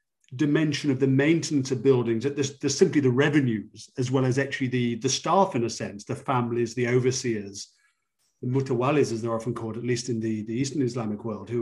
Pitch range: 115-140 Hz